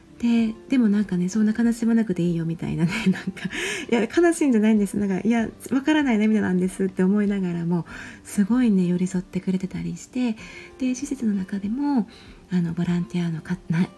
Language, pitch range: Japanese, 175-230 Hz